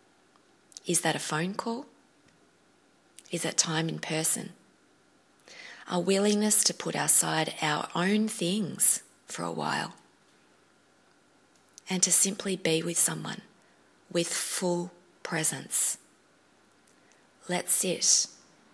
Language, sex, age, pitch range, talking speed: English, female, 20-39, 160-195 Hz, 100 wpm